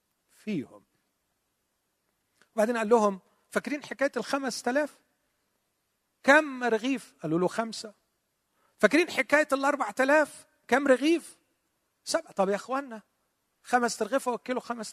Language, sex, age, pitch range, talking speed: Arabic, male, 40-59, 175-260 Hz, 110 wpm